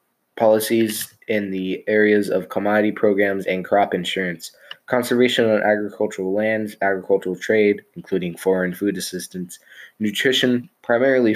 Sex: male